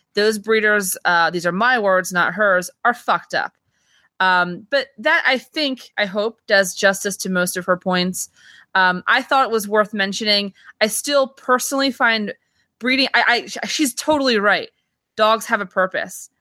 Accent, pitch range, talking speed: American, 170-220 Hz, 170 wpm